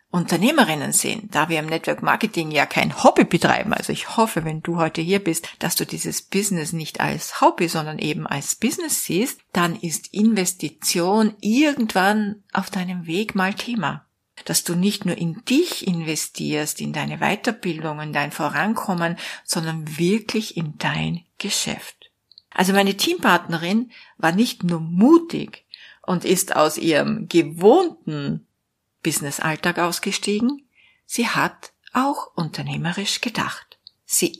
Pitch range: 165-215 Hz